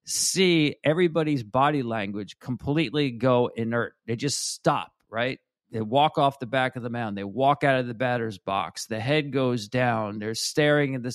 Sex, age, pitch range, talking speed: male, 40-59, 115-150 Hz, 185 wpm